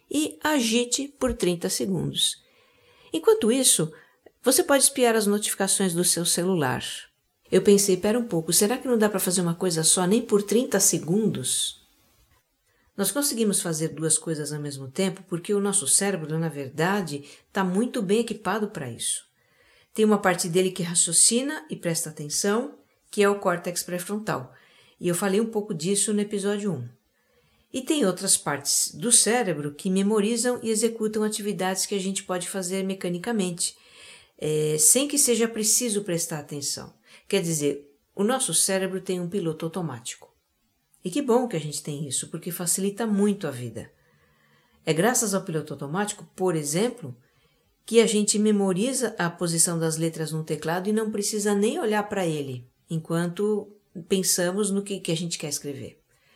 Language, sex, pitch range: Portuguese, female, 165-215 Hz